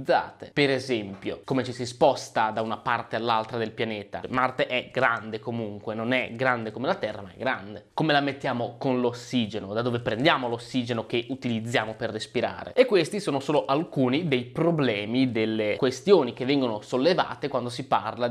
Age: 20-39